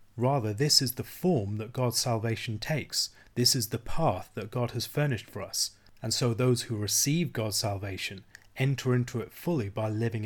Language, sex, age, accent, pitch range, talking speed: English, male, 30-49, British, 105-125 Hz, 185 wpm